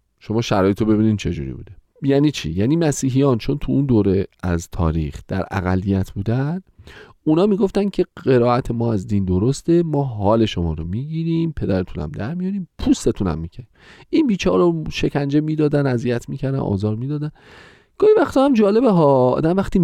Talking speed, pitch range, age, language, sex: 165 wpm, 110-175 Hz, 40-59, Persian, male